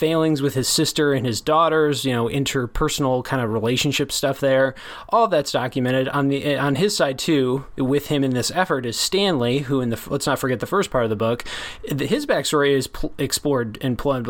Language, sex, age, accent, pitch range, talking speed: English, male, 20-39, American, 125-150 Hz, 215 wpm